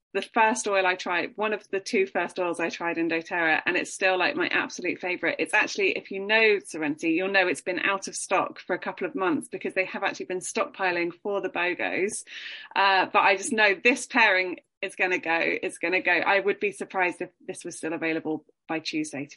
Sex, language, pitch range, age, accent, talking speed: female, English, 180-235 Hz, 20-39, British, 230 wpm